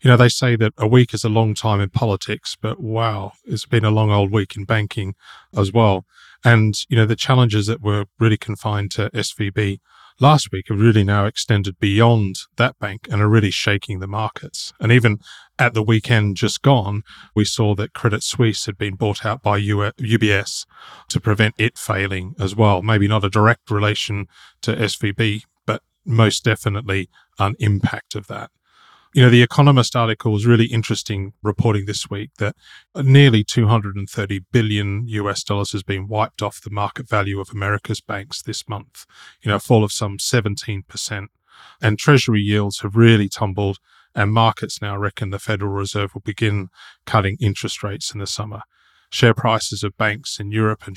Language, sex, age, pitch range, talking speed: English, male, 30-49, 100-115 Hz, 180 wpm